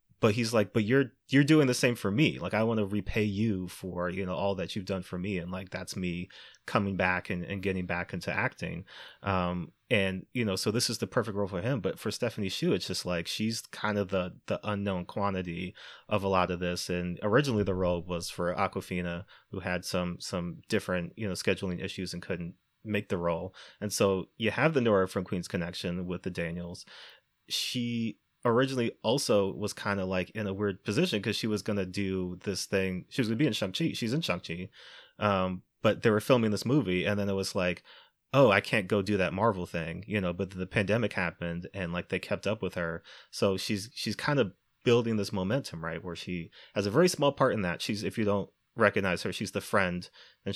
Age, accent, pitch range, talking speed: 30-49, American, 90-105 Hz, 230 wpm